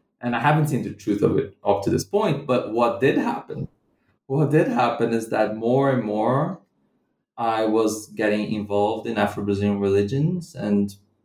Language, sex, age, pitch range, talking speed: English, male, 20-39, 100-125 Hz, 170 wpm